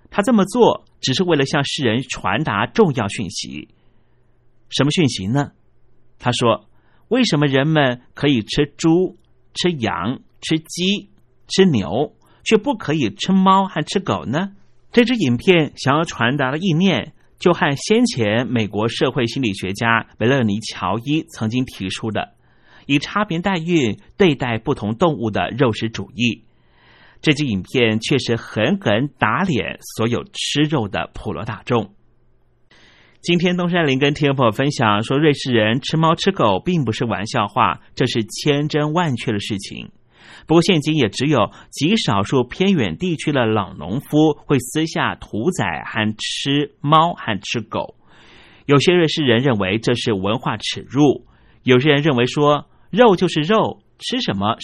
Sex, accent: male, native